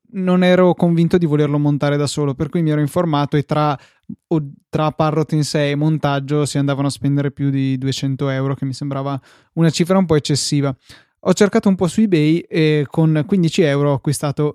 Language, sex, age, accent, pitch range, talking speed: Italian, male, 20-39, native, 140-160 Hz, 200 wpm